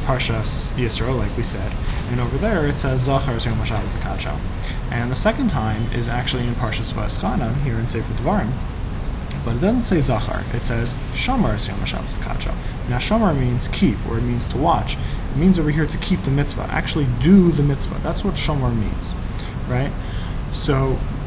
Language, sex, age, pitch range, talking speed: English, male, 20-39, 110-140 Hz, 170 wpm